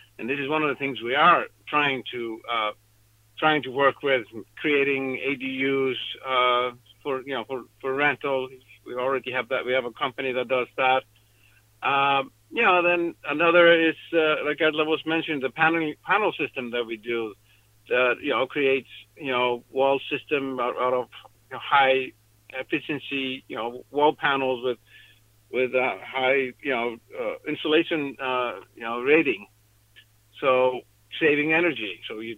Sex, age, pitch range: male, 60-79, 120-155 Hz